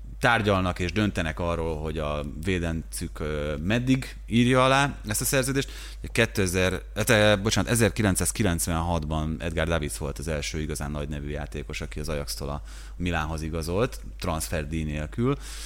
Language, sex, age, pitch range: Hungarian, male, 30-49, 80-95 Hz